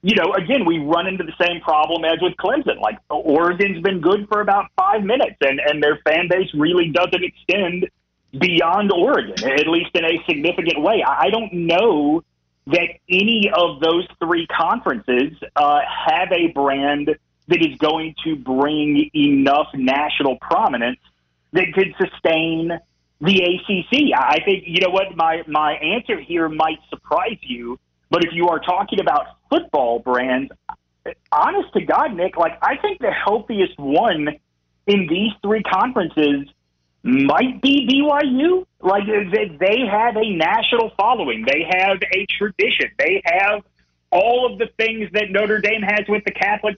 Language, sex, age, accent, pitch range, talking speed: English, male, 40-59, American, 160-210 Hz, 155 wpm